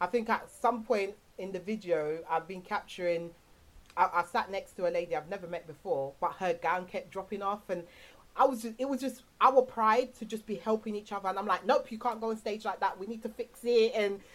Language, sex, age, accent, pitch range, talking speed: English, female, 30-49, British, 160-215 Hz, 250 wpm